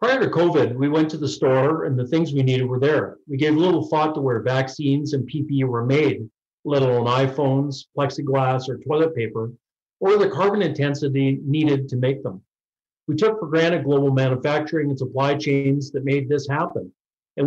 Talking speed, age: 190 wpm, 50-69